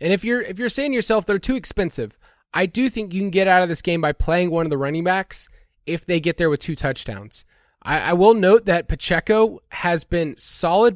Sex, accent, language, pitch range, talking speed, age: male, American, English, 155-195 Hz, 240 wpm, 20-39